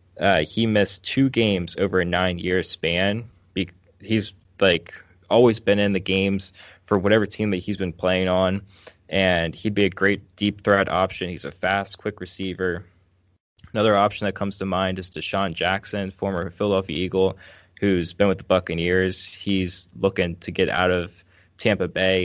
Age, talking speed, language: 20-39, 170 wpm, English